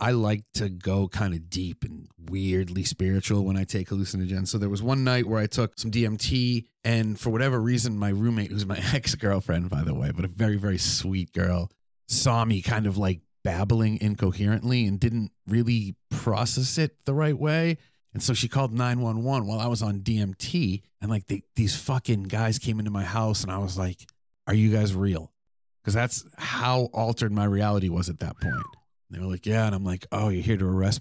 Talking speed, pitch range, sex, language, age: 205 wpm, 100-125 Hz, male, English, 30-49